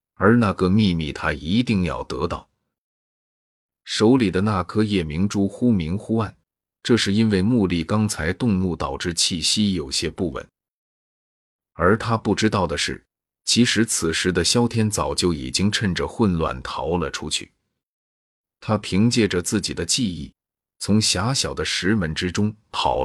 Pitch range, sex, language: 85-110 Hz, male, Chinese